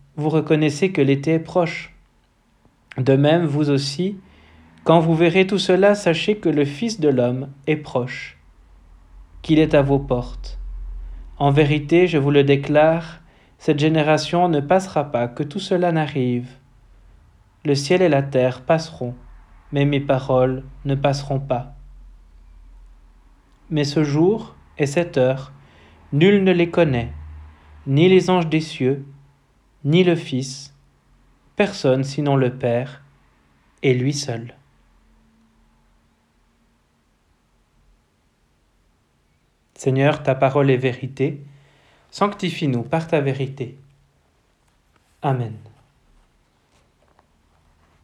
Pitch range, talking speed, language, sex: 115-155 Hz, 110 wpm, French, male